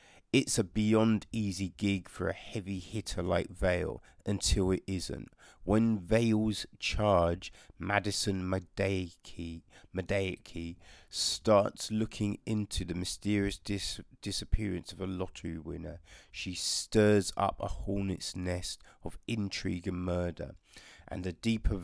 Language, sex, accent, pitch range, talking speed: English, male, British, 85-100 Hz, 115 wpm